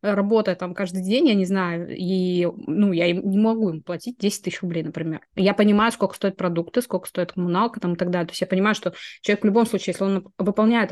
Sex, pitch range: female, 180-210 Hz